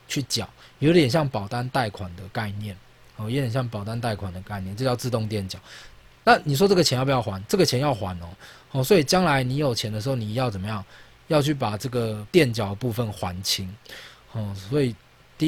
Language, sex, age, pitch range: Chinese, male, 20-39, 105-145 Hz